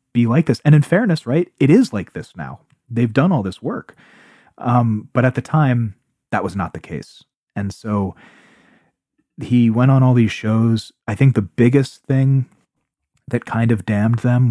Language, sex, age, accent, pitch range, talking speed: English, male, 30-49, American, 95-125 Hz, 185 wpm